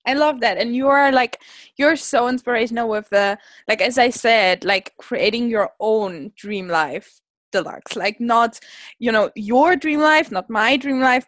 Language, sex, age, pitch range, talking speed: English, female, 10-29, 225-290 Hz, 180 wpm